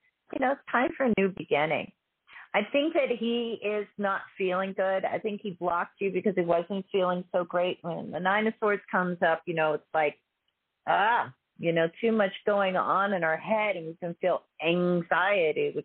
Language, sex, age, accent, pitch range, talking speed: English, female, 40-59, American, 170-215 Hz, 205 wpm